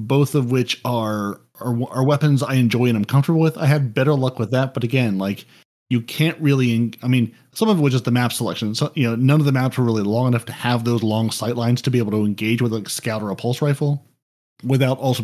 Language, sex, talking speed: English, male, 270 wpm